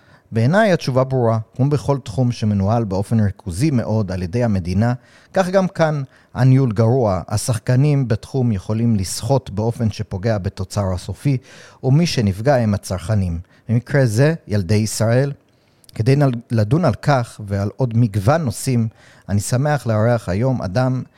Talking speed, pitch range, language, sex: 135 wpm, 105-130 Hz, Hebrew, male